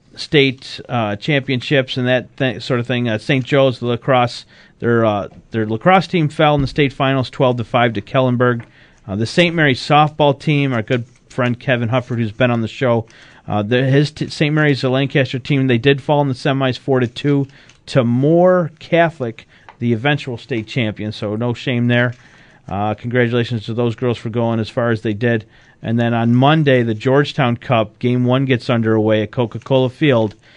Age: 40-59